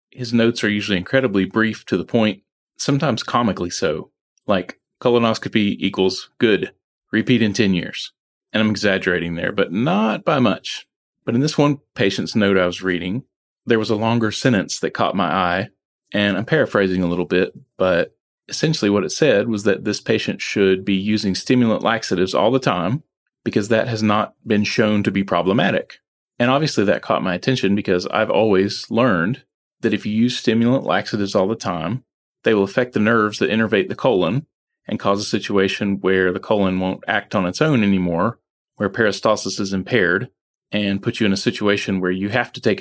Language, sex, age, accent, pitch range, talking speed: English, male, 30-49, American, 95-115 Hz, 190 wpm